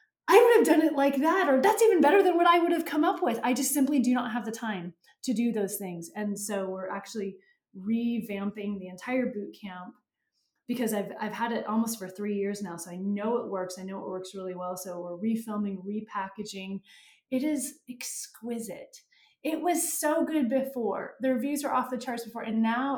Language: English